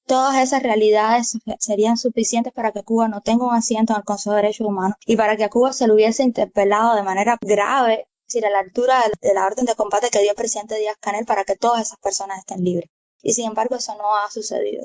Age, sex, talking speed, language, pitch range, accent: 20-39, female, 240 wpm, English, 205-235 Hz, American